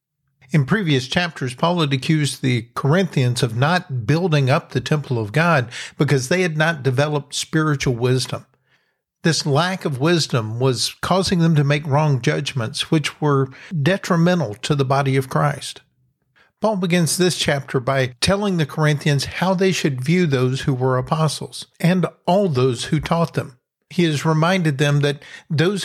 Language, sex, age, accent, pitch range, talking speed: English, male, 50-69, American, 135-175 Hz, 165 wpm